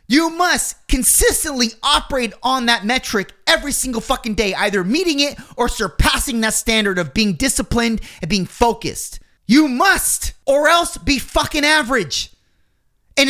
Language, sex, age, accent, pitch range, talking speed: English, male, 30-49, American, 200-290 Hz, 145 wpm